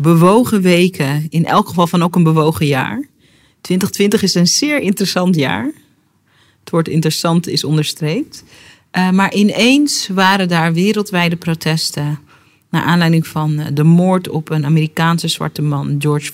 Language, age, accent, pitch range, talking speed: Dutch, 40-59, Dutch, 155-200 Hz, 145 wpm